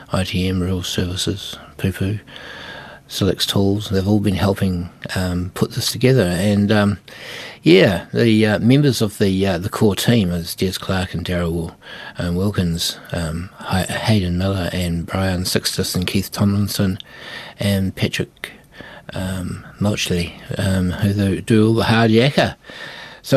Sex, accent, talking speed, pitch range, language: male, Australian, 140 wpm, 85-105 Hz, English